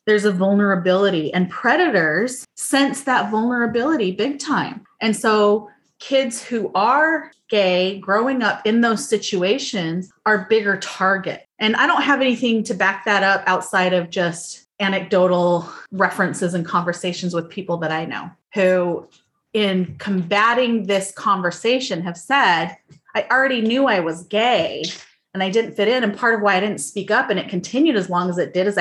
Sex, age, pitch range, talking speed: female, 30-49, 180-225 Hz, 165 wpm